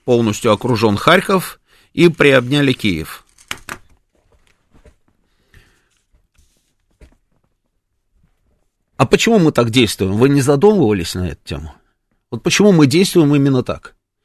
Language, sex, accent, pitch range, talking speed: Russian, male, native, 120-165 Hz, 95 wpm